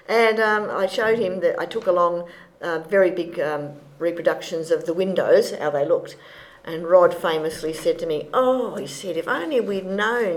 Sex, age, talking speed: female, 50-69, 190 wpm